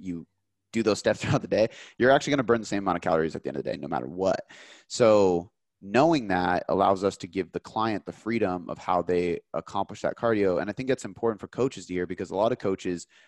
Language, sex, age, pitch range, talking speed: English, male, 30-49, 90-110 Hz, 255 wpm